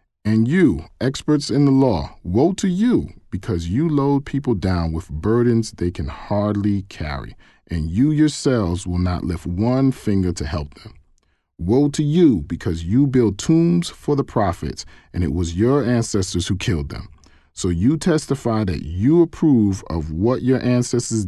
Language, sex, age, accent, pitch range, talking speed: English, male, 40-59, American, 85-120 Hz, 165 wpm